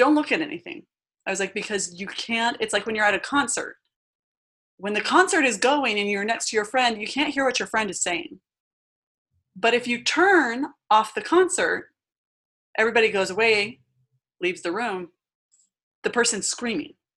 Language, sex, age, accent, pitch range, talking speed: English, female, 20-39, American, 190-265 Hz, 180 wpm